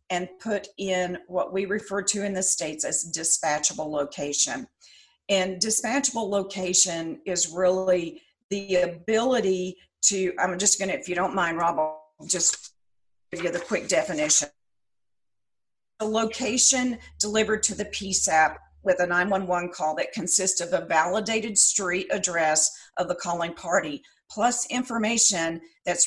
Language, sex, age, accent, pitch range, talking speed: English, female, 40-59, American, 170-210 Hz, 135 wpm